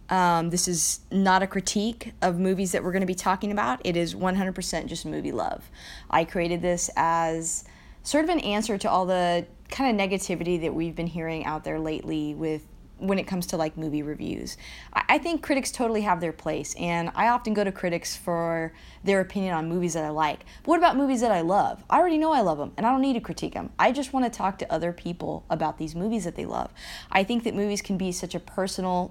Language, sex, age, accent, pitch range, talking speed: English, female, 20-39, American, 165-205 Hz, 230 wpm